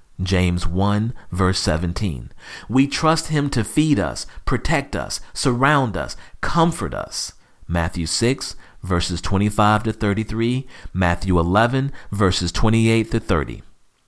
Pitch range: 90-135 Hz